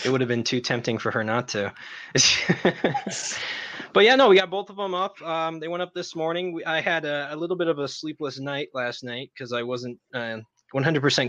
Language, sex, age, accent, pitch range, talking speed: English, male, 20-39, American, 115-160 Hz, 220 wpm